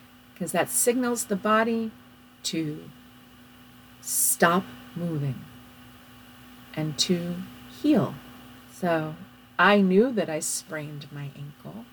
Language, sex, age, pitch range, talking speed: English, female, 40-59, 165-225 Hz, 90 wpm